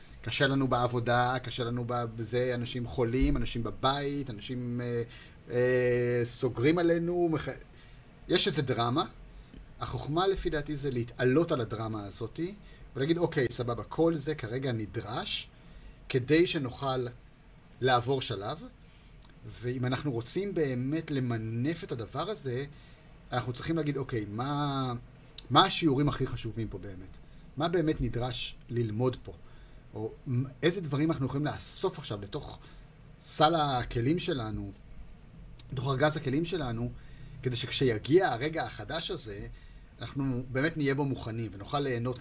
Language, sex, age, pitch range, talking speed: Hebrew, male, 30-49, 120-145 Hz, 125 wpm